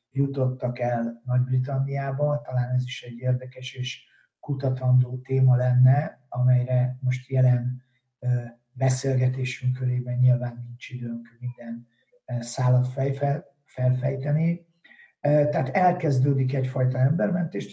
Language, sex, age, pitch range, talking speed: Hungarian, male, 50-69, 125-135 Hz, 90 wpm